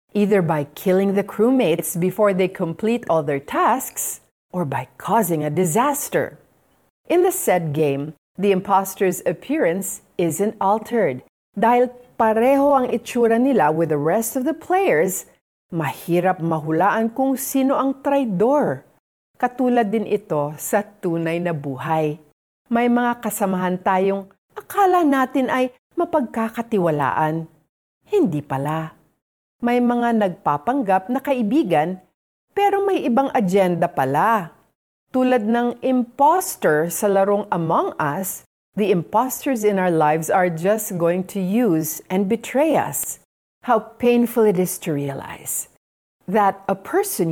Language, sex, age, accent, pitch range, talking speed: Filipino, female, 40-59, native, 175-250 Hz, 125 wpm